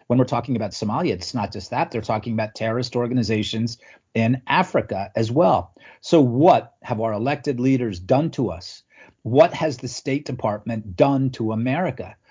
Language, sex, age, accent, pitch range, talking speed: English, male, 40-59, American, 115-140 Hz, 170 wpm